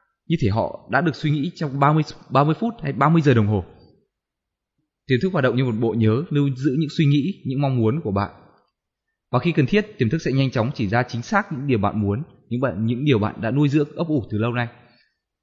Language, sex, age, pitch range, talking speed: Vietnamese, male, 20-39, 110-150 Hz, 250 wpm